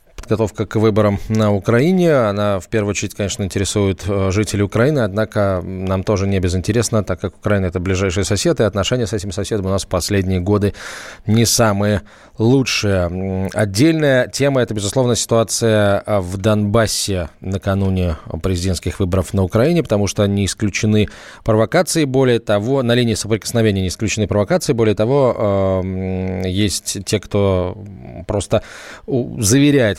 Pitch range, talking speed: 100-115 Hz, 140 wpm